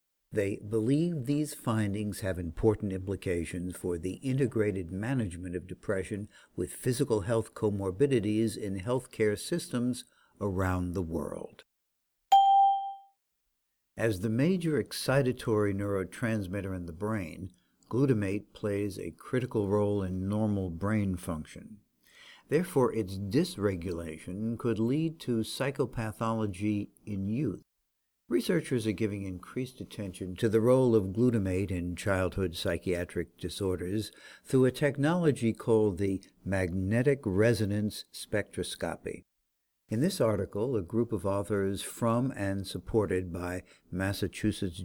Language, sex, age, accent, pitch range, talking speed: English, male, 60-79, American, 95-120 Hz, 110 wpm